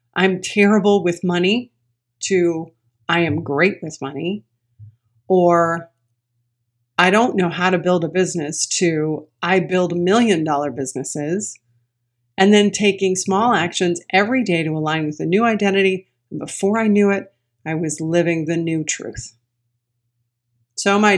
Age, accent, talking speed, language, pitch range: 40-59, American, 145 wpm, English, 135-185 Hz